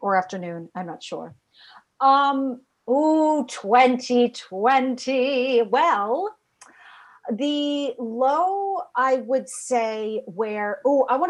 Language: English